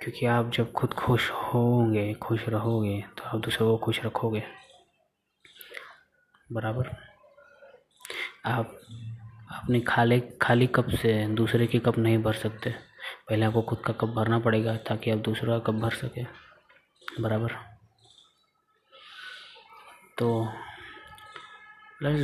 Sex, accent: male, native